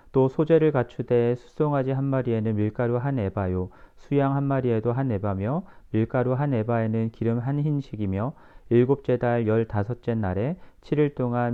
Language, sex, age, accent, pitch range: Korean, male, 40-59, native, 110-150 Hz